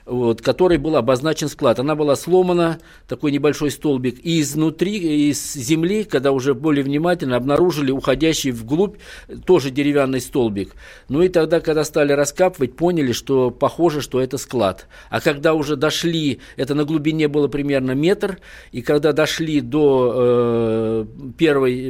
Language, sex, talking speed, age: Russian, male, 145 wpm, 50-69